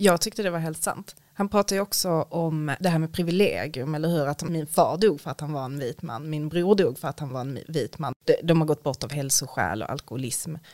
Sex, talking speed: female, 250 wpm